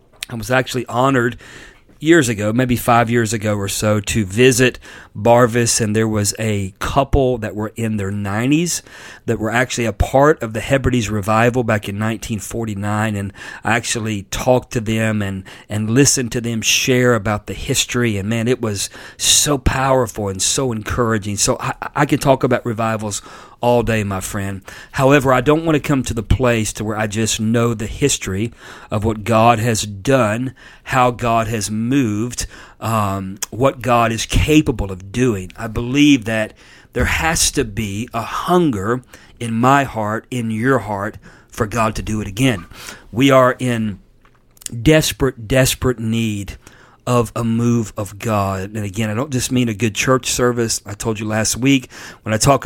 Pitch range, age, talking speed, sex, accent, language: 110-130 Hz, 40-59, 175 wpm, male, American, English